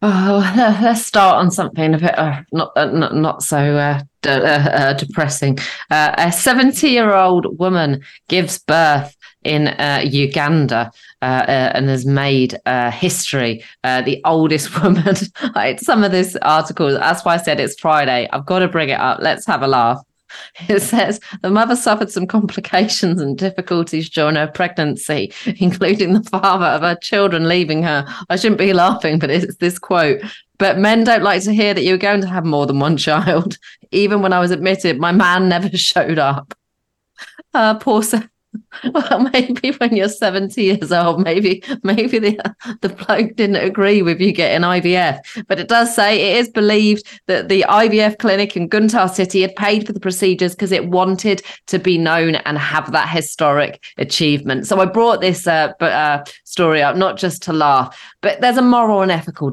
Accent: British